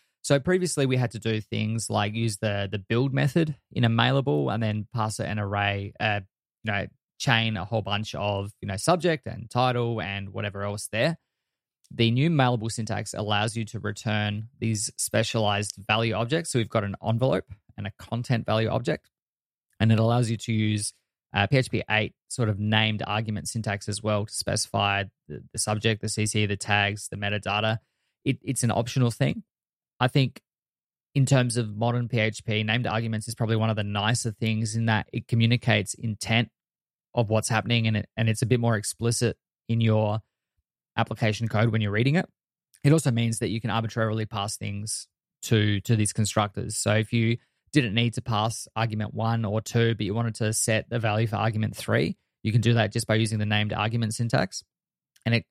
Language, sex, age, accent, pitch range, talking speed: English, male, 20-39, Australian, 105-115 Hz, 195 wpm